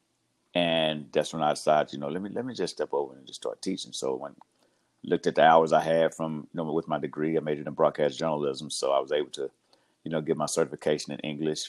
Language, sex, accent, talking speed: English, male, American, 255 wpm